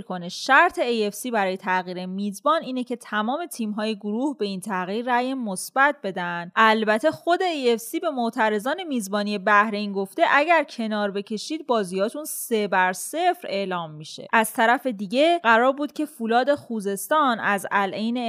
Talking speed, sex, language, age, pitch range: 155 wpm, female, Persian, 20-39, 200-265 Hz